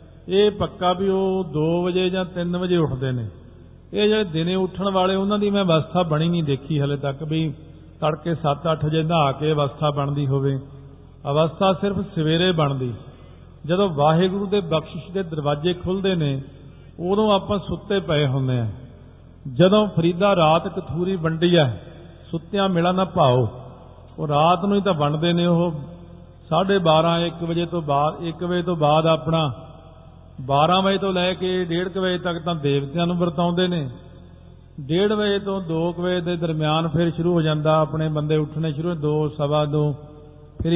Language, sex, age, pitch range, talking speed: Punjabi, male, 50-69, 150-185 Hz, 165 wpm